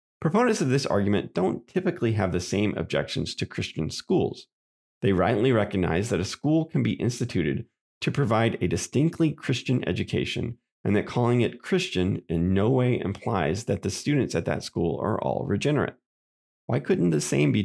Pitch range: 90-125 Hz